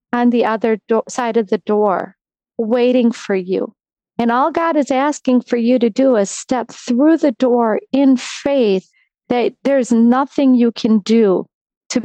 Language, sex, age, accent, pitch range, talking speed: English, female, 40-59, American, 240-350 Hz, 160 wpm